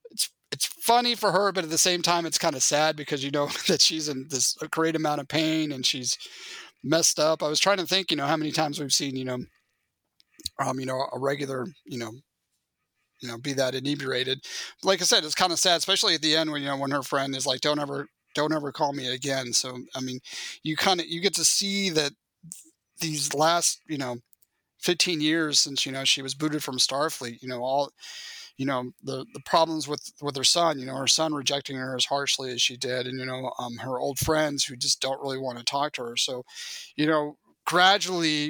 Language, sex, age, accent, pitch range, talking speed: English, male, 30-49, American, 130-160 Hz, 230 wpm